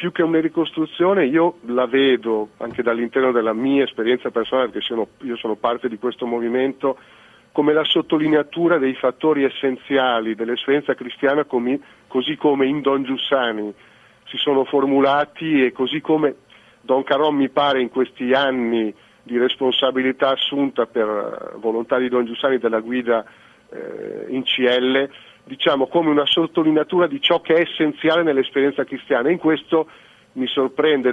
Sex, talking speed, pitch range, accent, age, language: male, 145 wpm, 125-150 Hz, native, 40-59, Italian